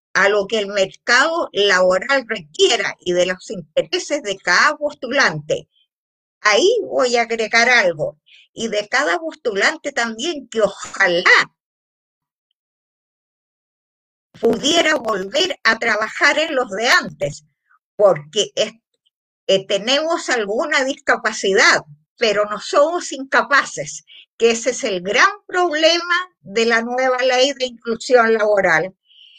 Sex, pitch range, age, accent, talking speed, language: female, 200-300 Hz, 50-69, American, 110 wpm, Spanish